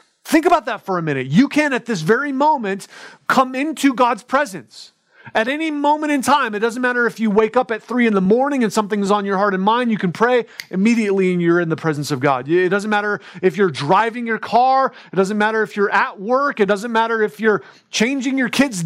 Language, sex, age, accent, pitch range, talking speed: English, male, 30-49, American, 190-240 Hz, 235 wpm